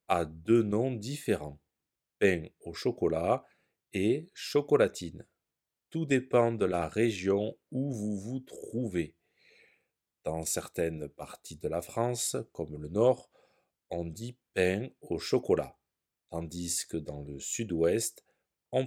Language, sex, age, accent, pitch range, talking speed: French, male, 40-59, French, 85-120 Hz, 120 wpm